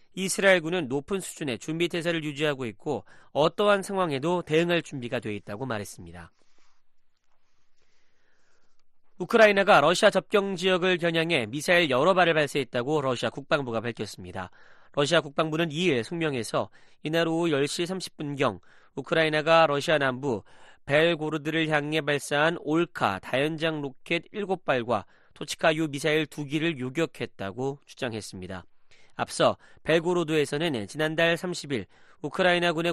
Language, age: Korean, 30-49